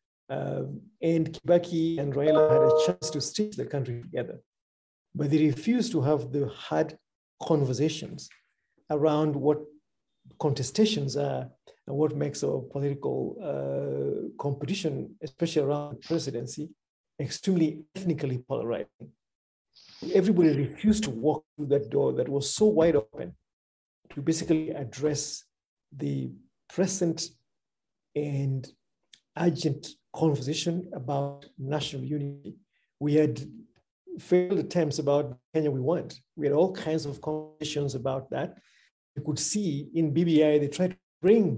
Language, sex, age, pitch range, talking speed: English, male, 50-69, 140-165 Hz, 125 wpm